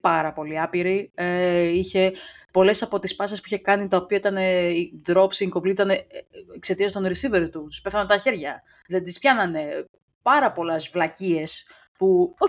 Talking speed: 170 wpm